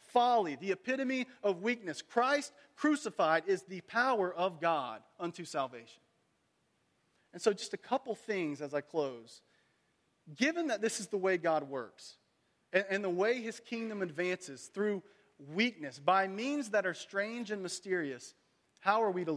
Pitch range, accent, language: 160-205 Hz, American, English